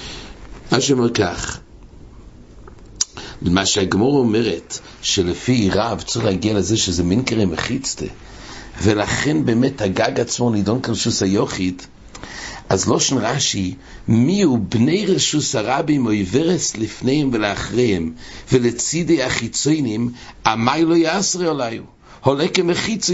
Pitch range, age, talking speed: 100-150 Hz, 60-79, 110 wpm